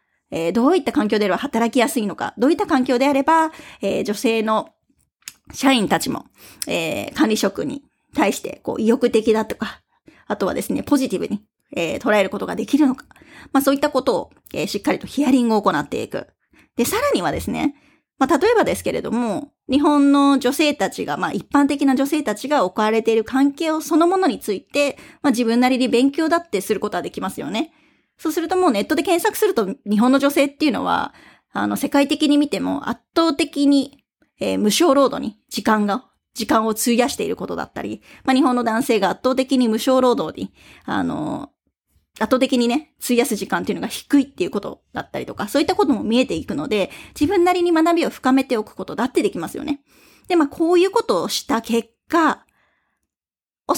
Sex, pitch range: female, 225-305 Hz